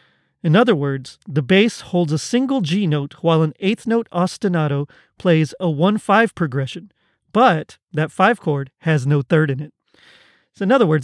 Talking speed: 180 wpm